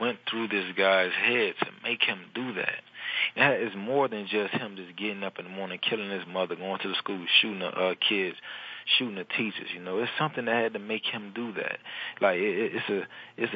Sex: male